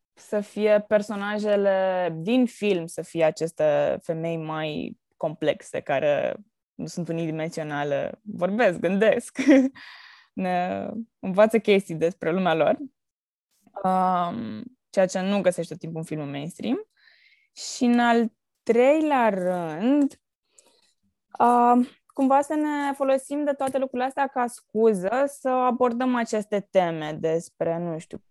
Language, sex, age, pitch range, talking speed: Romanian, female, 20-39, 180-235 Hz, 115 wpm